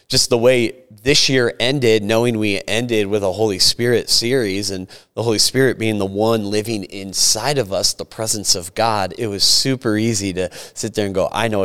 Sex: male